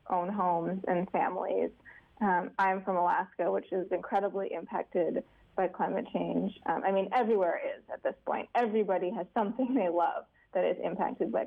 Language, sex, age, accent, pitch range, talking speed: English, female, 20-39, American, 180-220 Hz, 165 wpm